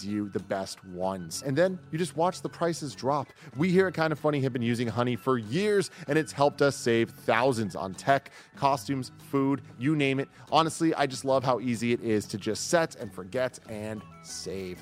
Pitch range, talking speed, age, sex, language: 105-150 Hz, 210 wpm, 30-49, male, English